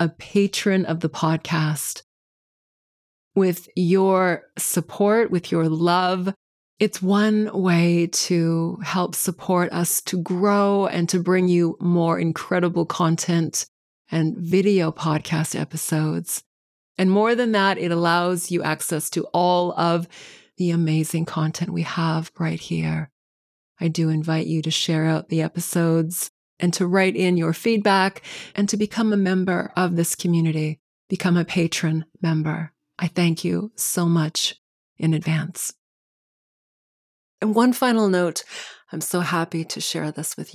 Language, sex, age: English, female, 20-39